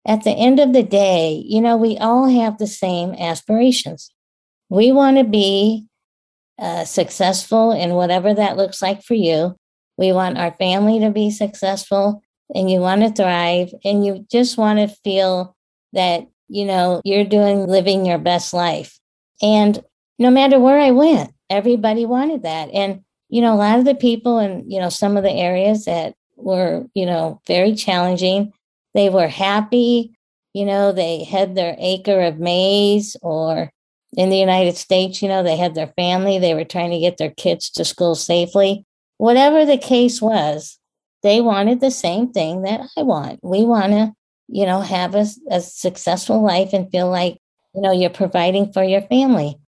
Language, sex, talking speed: English, female, 180 wpm